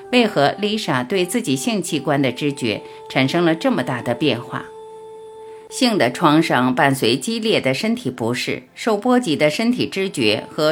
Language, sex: Chinese, female